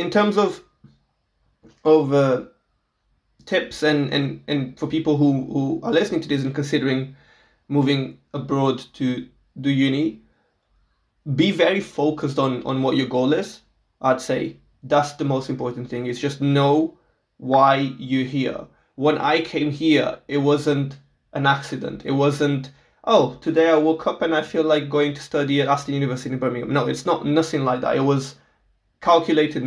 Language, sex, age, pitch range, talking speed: English, male, 20-39, 130-150 Hz, 165 wpm